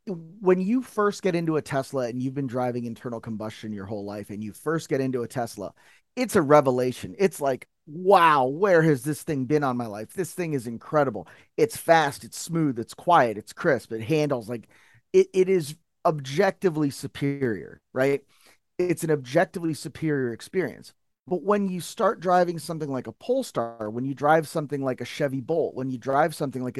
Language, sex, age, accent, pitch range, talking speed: English, male, 30-49, American, 125-165 Hz, 190 wpm